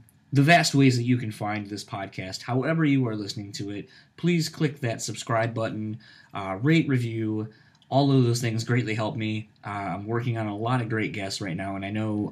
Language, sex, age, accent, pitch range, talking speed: English, male, 20-39, American, 105-125 Hz, 215 wpm